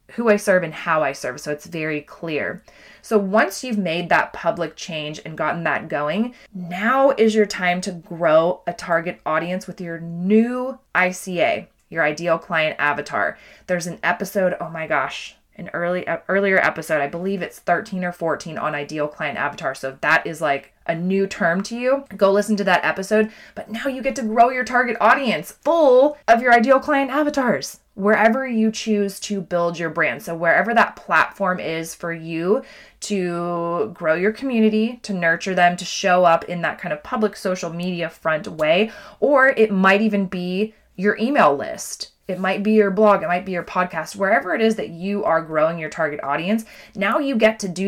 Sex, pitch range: female, 170-215 Hz